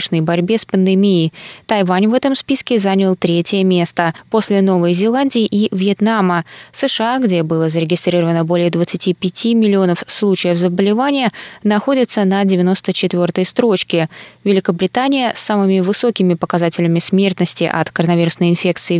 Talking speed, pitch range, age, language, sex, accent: 115 wpm, 175-220 Hz, 20-39, Russian, female, native